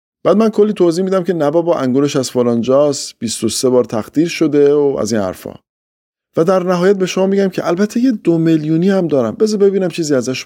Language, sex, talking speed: Persian, male, 205 wpm